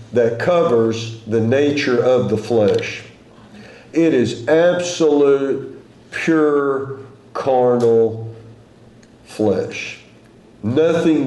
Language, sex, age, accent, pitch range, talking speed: English, male, 50-69, American, 115-145 Hz, 75 wpm